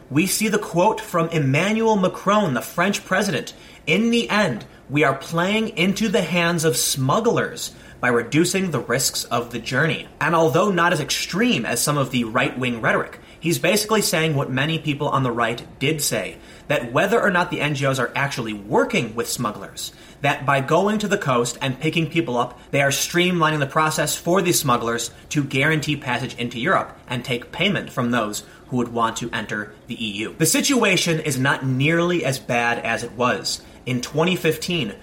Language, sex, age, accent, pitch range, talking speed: English, male, 30-49, American, 125-170 Hz, 185 wpm